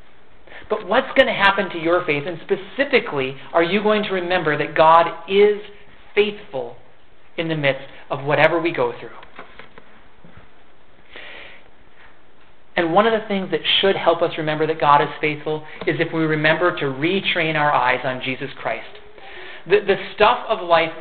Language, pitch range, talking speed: English, 145-190 Hz, 165 wpm